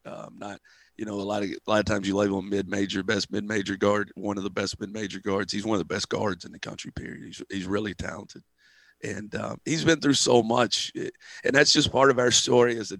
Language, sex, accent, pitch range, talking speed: English, male, American, 100-115 Hz, 250 wpm